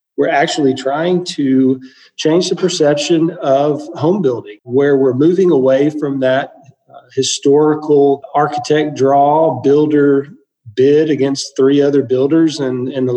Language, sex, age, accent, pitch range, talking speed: English, male, 40-59, American, 130-150 Hz, 130 wpm